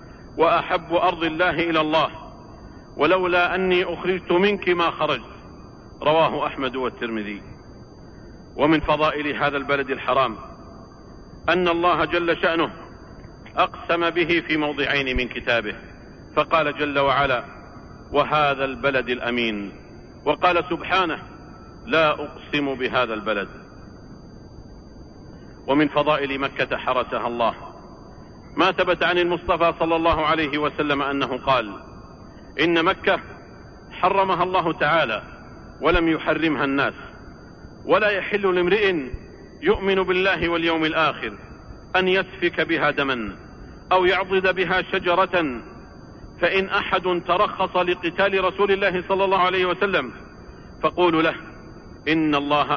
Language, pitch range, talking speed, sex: Arabic, 140-180 Hz, 105 wpm, male